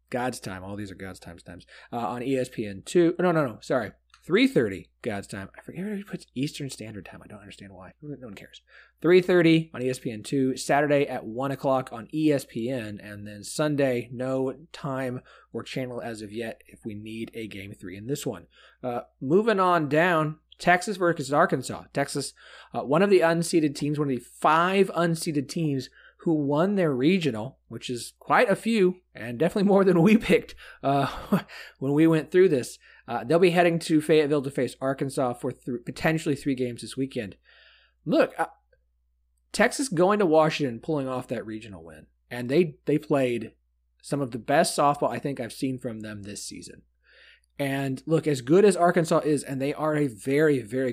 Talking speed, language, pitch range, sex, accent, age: 190 wpm, English, 115-160 Hz, male, American, 30-49